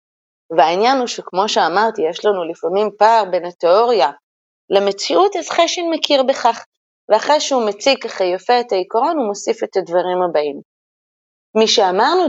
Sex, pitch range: female, 180-265 Hz